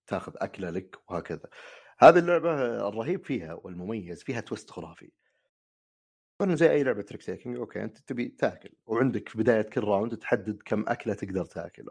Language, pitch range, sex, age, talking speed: Arabic, 85-115 Hz, male, 30-49, 155 wpm